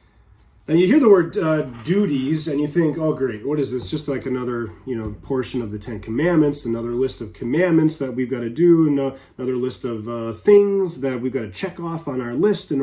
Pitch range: 110-135 Hz